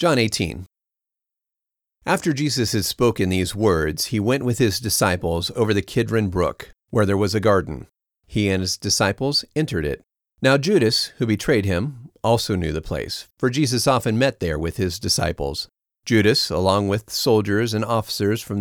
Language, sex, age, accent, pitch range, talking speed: English, male, 40-59, American, 90-115 Hz, 170 wpm